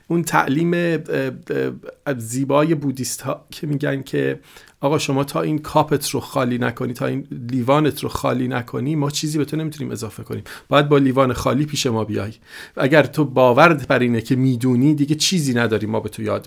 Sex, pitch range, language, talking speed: male, 130-155 Hz, Persian, 180 wpm